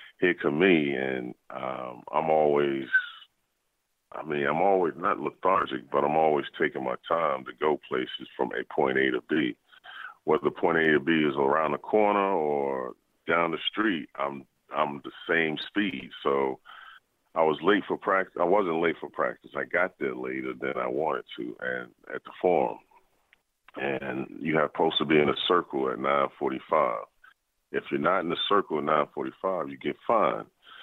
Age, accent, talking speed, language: 40-59, American, 175 wpm, English